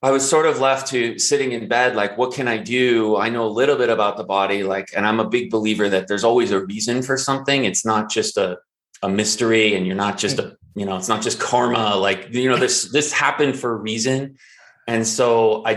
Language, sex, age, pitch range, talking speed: English, male, 30-49, 105-125 Hz, 245 wpm